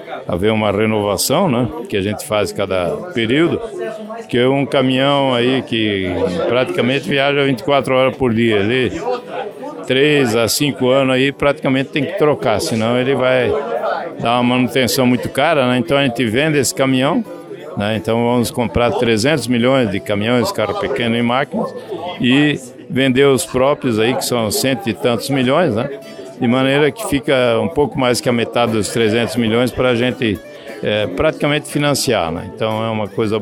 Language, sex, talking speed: Portuguese, male, 170 wpm